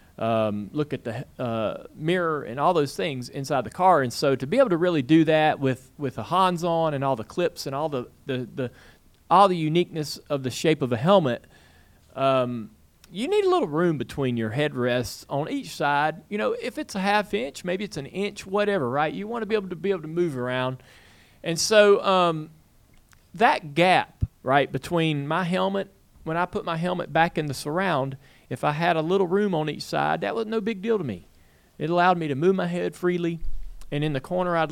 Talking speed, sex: 220 wpm, male